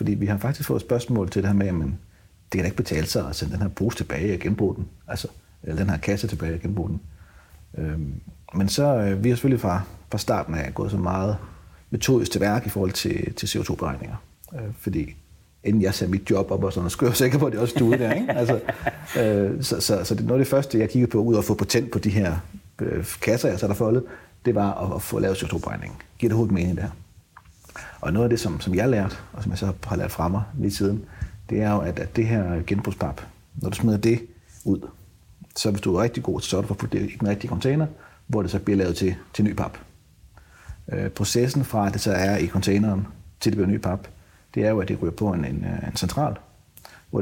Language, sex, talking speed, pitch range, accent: Danish, male, 245 wpm, 95-115 Hz, native